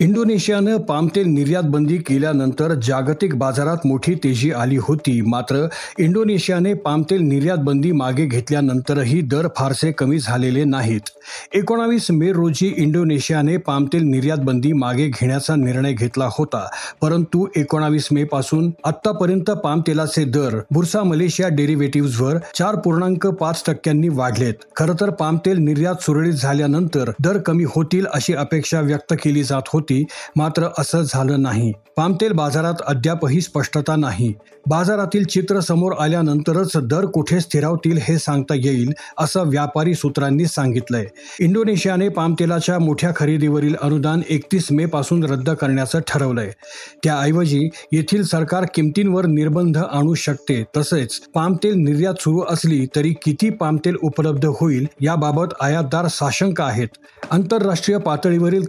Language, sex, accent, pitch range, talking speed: Marathi, male, native, 145-170 Hz, 110 wpm